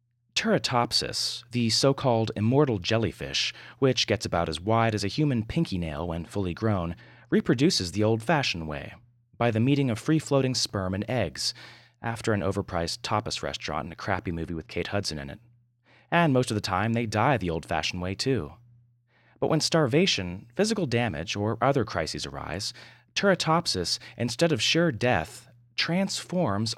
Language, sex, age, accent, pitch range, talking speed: English, male, 30-49, American, 100-130 Hz, 155 wpm